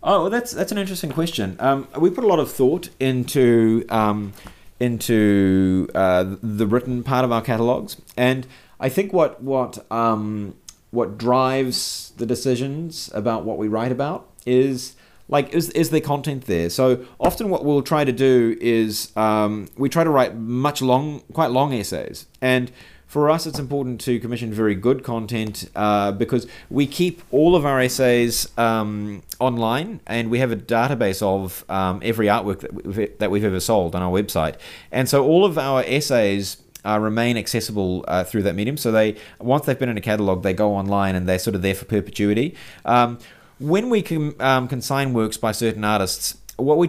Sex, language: male, English